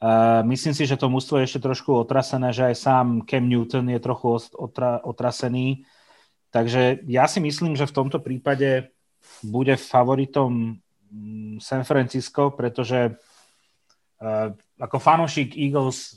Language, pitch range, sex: Slovak, 115-135 Hz, male